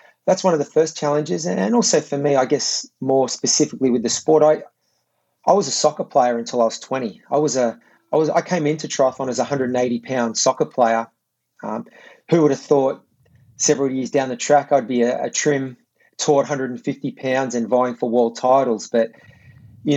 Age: 30-49